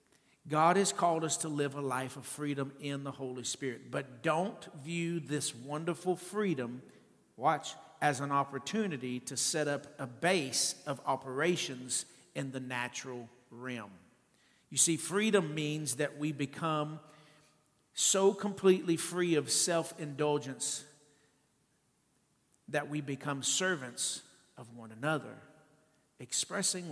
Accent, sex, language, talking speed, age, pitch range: American, male, English, 125 wpm, 50-69, 125-155 Hz